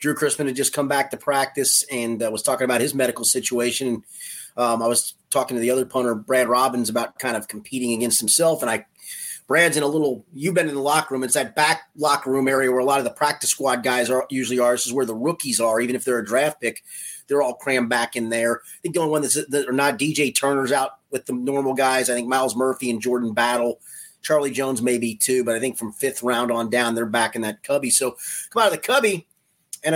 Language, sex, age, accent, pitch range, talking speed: English, male, 30-49, American, 125-170 Hz, 250 wpm